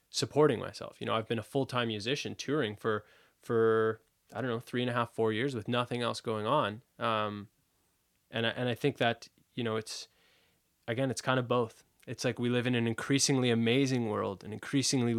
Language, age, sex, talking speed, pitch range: English, 20-39, male, 200 wpm, 110-125 Hz